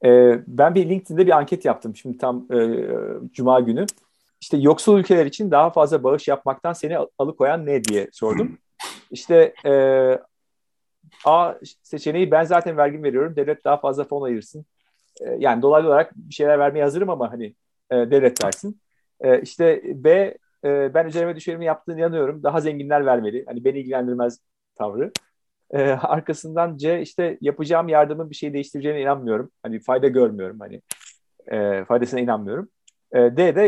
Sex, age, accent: male, 40-59, native